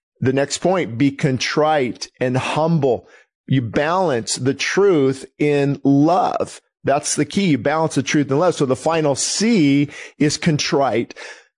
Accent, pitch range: American, 125-155 Hz